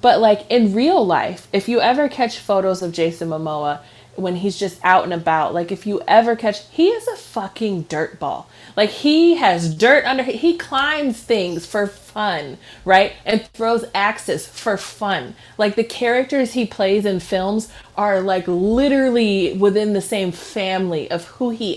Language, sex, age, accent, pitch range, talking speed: English, female, 30-49, American, 200-275 Hz, 175 wpm